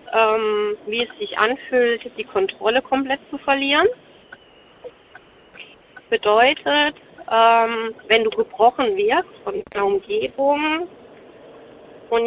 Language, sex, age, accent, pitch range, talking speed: German, female, 30-49, German, 235-380 Hz, 100 wpm